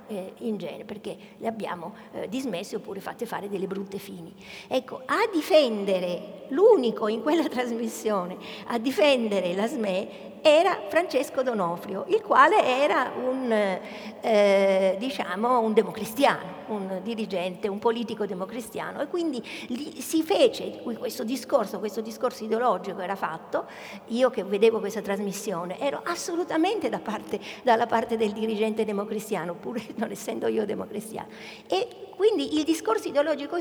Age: 50-69